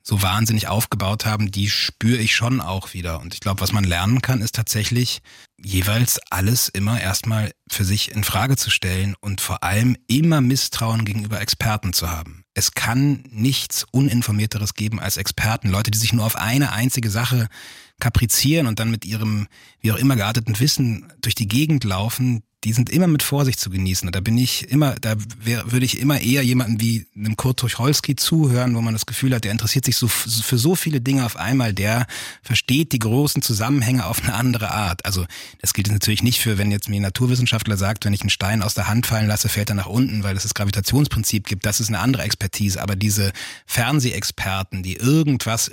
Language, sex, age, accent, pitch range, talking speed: German, male, 30-49, German, 100-125 Hz, 200 wpm